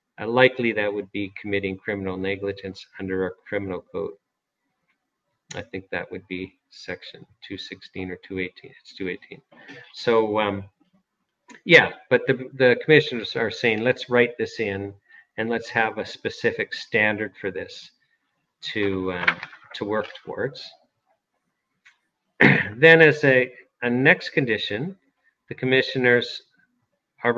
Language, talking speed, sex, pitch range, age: English, 125 wpm, male, 110-150 Hz, 40-59